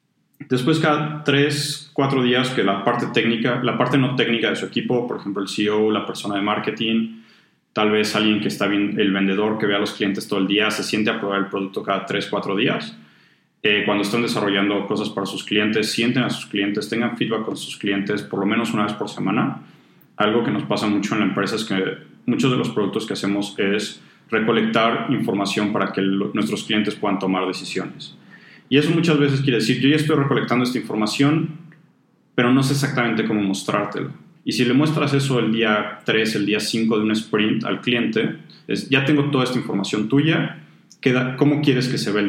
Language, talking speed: Spanish, 210 wpm